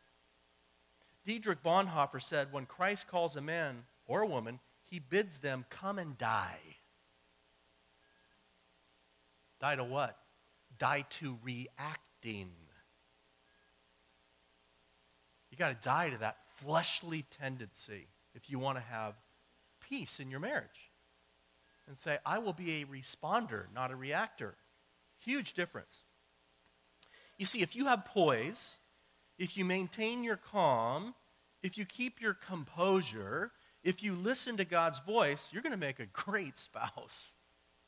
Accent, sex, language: American, male, English